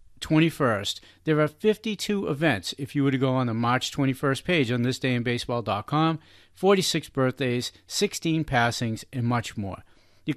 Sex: male